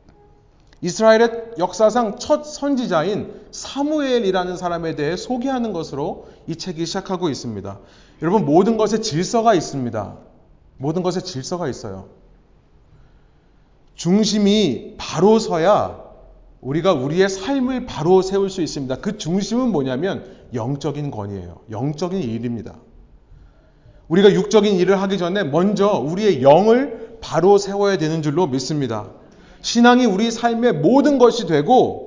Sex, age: male, 30-49